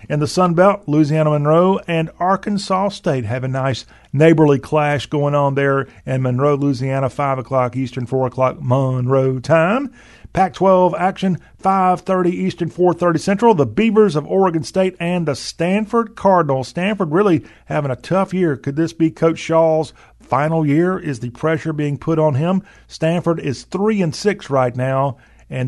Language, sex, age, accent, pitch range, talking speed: English, male, 40-59, American, 130-165 Hz, 160 wpm